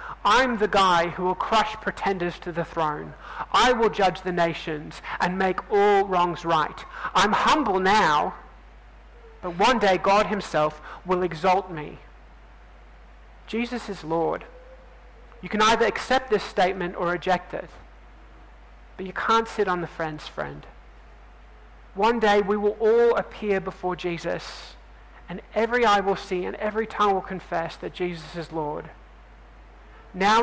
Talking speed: 145 wpm